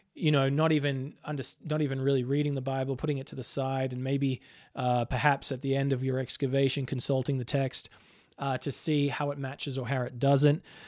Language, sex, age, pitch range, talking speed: English, male, 20-39, 135-150 Hz, 215 wpm